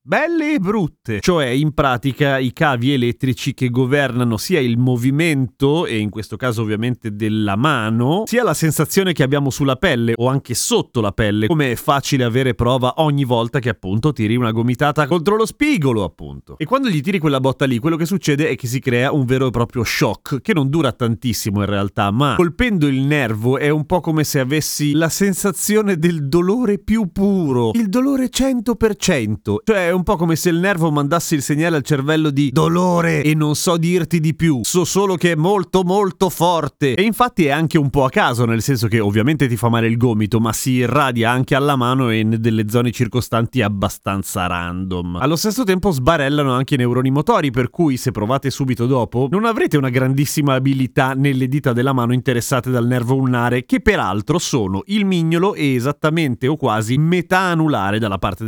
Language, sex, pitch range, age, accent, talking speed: Italian, male, 120-165 Hz, 30-49, native, 195 wpm